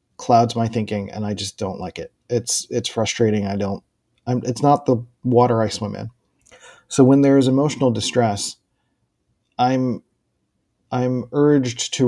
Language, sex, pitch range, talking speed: English, male, 110-130 Hz, 155 wpm